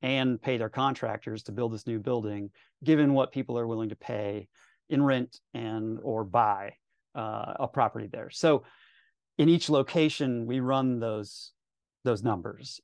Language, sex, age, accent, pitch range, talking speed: English, male, 30-49, American, 110-135 Hz, 160 wpm